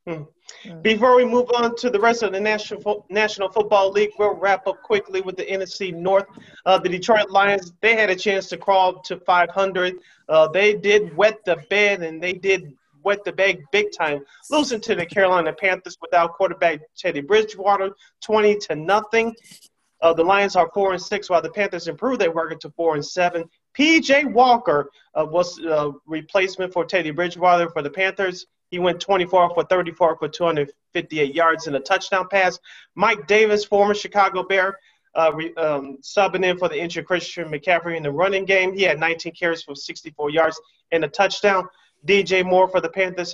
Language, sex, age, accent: English, male, 30-49, American